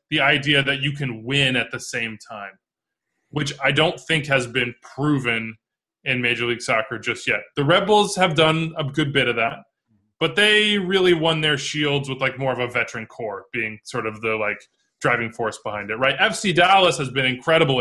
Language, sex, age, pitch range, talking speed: English, male, 20-39, 120-155 Hz, 200 wpm